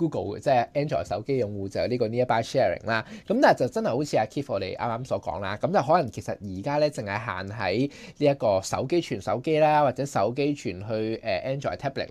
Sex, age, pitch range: male, 20-39, 120-180 Hz